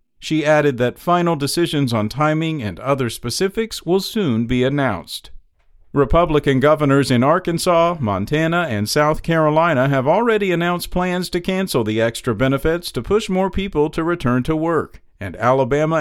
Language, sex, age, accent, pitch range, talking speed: English, male, 50-69, American, 130-175 Hz, 155 wpm